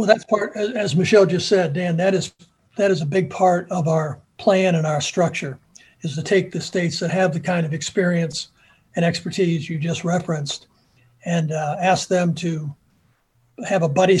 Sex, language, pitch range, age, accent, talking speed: male, English, 155-185 Hz, 60-79, American, 190 wpm